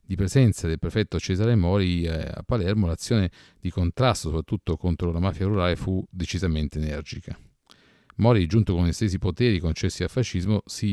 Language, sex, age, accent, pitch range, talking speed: Italian, male, 40-59, native, 85-105 Hz, 155 wpm